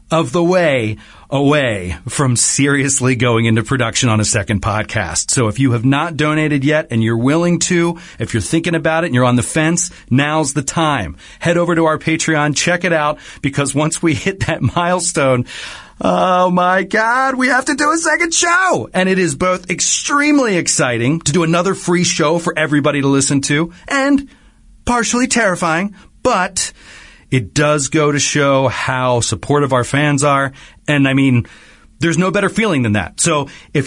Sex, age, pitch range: male, 40-59, 125-170 Hz